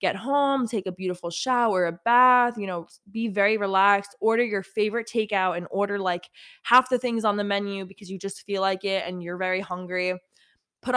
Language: English